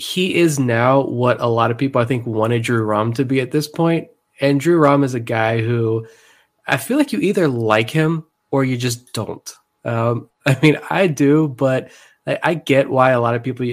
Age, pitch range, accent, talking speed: 20-39, 115-145 Hz, American, 220 wpm